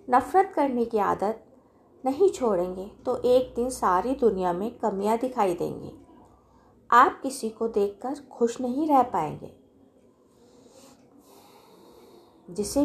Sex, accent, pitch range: female, native, 205-275 Hz